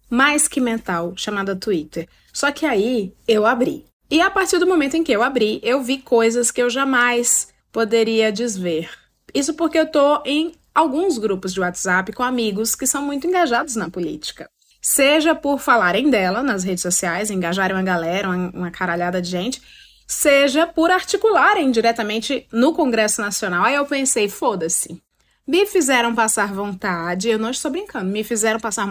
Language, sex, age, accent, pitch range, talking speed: Portuguese, female, 20-39, Brazilian, 200-300 Hz, 170 wpm